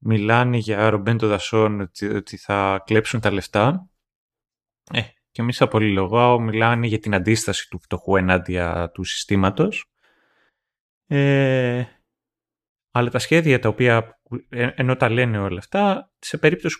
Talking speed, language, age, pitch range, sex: 135 wpm, Greek, 20-39, 100-130 Hz, male